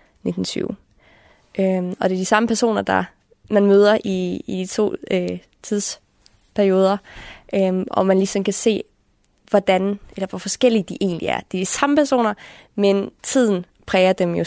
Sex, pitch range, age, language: female, 180-210 Hz, 20-39, Danish